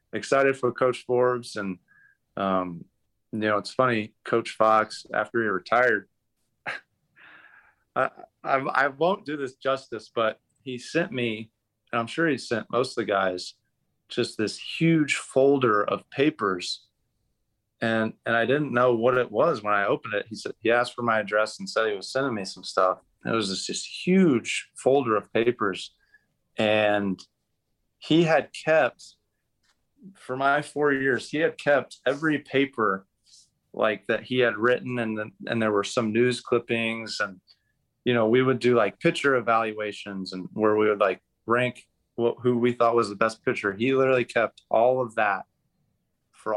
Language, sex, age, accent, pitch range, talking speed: English, male, 40-59, American, 110-135 Hz, 170 wpm